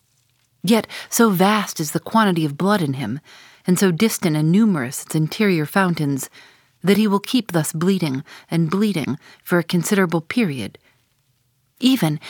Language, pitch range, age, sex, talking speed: English, 140-195 Hz, 40-59, female, 150 wpm